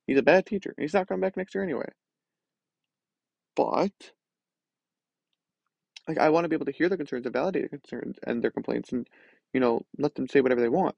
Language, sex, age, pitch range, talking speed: English, male, 20-39, 120-145 Hz, 210 wpm